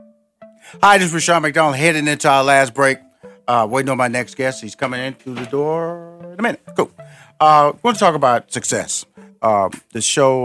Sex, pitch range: male, 100-130 Hz